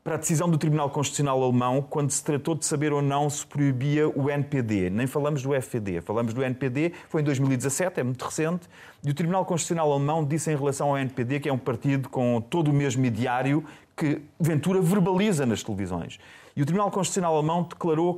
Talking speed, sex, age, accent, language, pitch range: 200 wpm, male, 30-49, Portuguese, Portuguese, 130-165 Hz